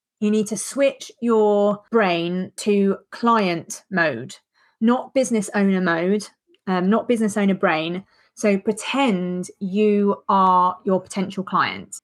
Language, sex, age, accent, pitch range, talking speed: English, female, 30-49, British, 180-215 Hz, 125 wpm